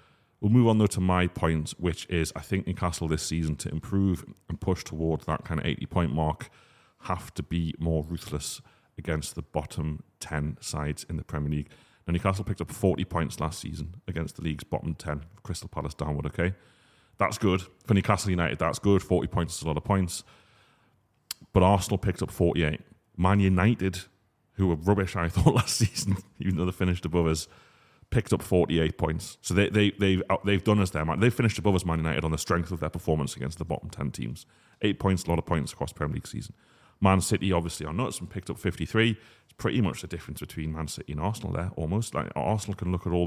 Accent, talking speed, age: British, 215 wpm, 30-49